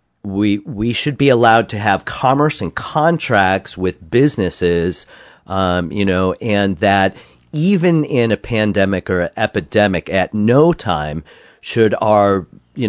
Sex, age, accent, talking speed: male, 40-59, American, 135 wpm